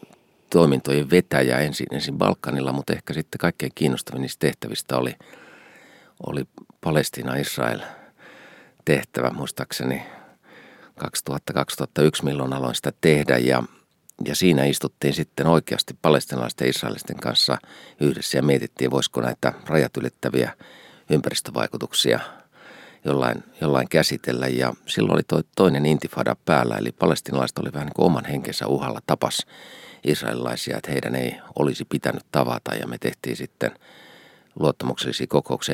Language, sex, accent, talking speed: Finnish, male, native, 125 wpm